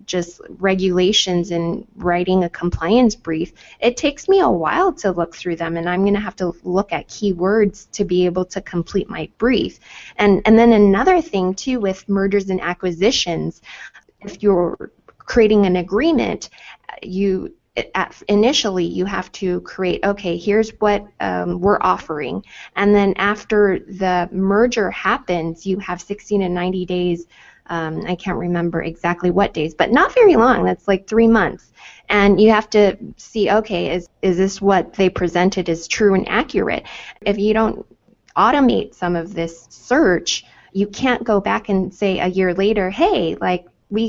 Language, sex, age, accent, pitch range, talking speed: English, female, 20-39, American, 175-210 Hz, 165 wpm